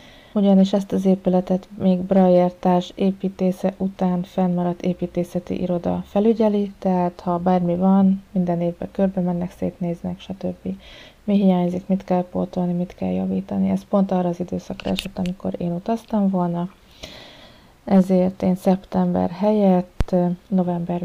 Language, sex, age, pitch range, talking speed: Hungarian, female, 30-49, 175-190 Hz, 130 wpm